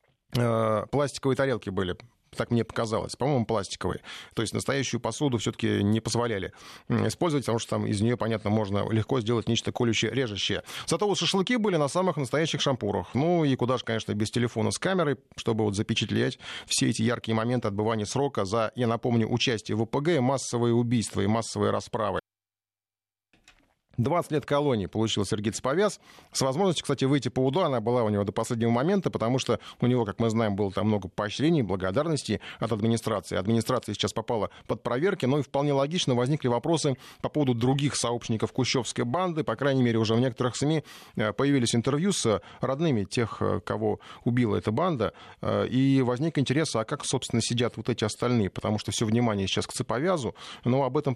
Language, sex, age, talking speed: Russian, male, 30-49, 180 wpm